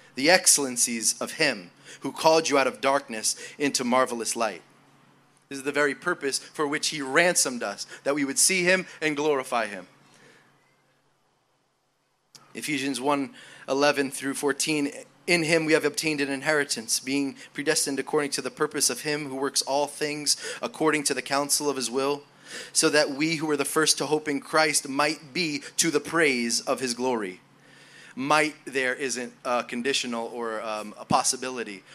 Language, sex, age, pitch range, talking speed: English, male, 20-39, 125-150 Hz, 170 wpm